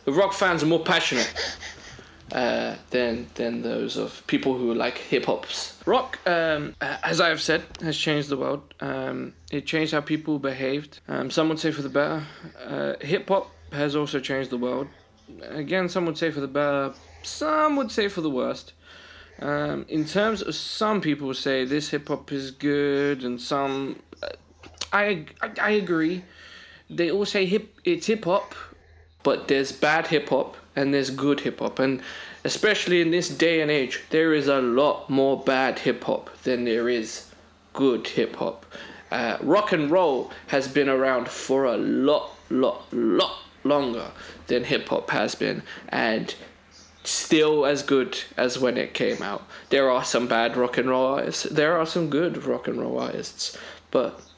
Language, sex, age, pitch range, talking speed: English, male, 20-39, 130-165 Hz, 165 wpm